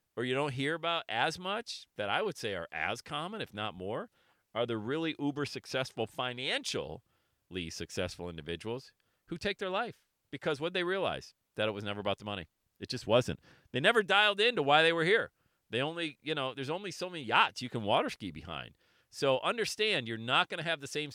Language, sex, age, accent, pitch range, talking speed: English, male, 40-59, American, 115-190 Hz, 215 wpm